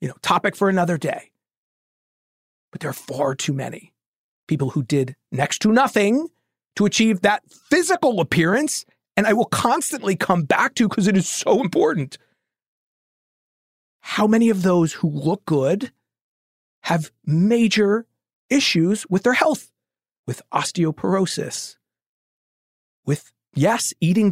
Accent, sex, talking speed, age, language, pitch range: American, male, 130 wpm, 40-59, English, 160-220 Hz